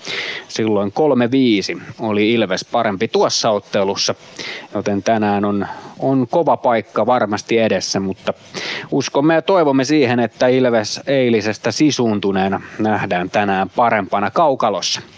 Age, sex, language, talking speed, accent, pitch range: 30-49, male, Finnish, 110 wpm, native, 105-140 Hz